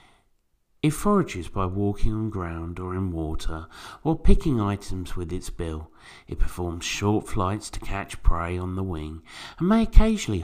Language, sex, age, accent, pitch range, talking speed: English, male, 50-69, British, 85-120 Hz, 160 wpm